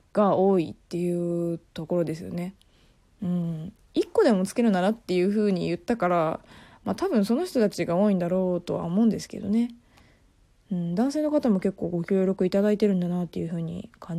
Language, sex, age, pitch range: Japanese, female, 20-39, 175-230 Hz